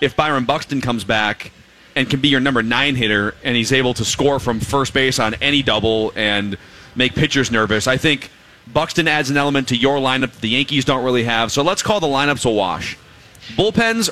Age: 30-49